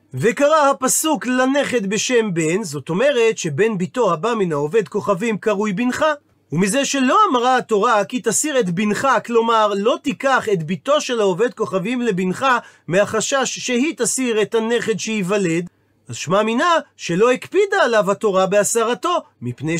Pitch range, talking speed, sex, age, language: 195-255 Hz, 140 wpm, male, 40-59, Hebrew